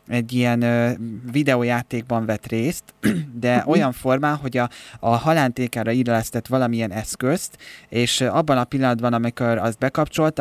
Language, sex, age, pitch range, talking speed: Hungarian, male, 20-39, 115-130 Hz, 135 wpm